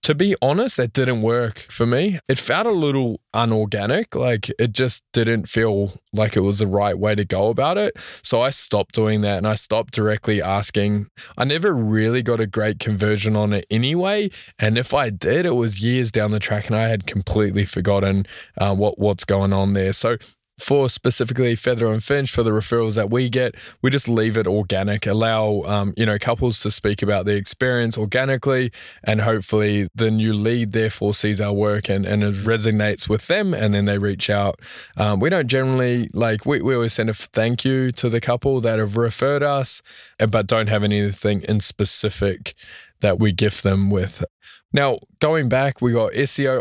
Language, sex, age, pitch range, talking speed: English, male, 20-39, 105-125 Hz, 195 wpm